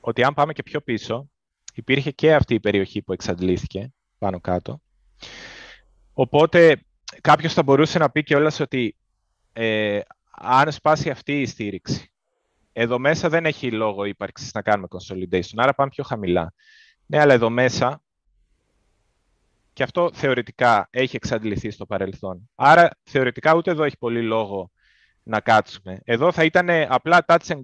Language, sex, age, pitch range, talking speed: Greek, male, 20-39, 110-150 Hz, 140 wpm